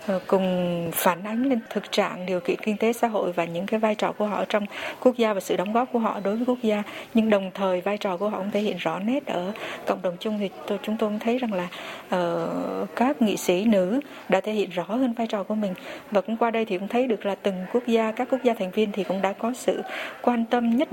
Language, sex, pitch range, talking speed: Vietnamese, female, 190-230 Hz, 265 wpm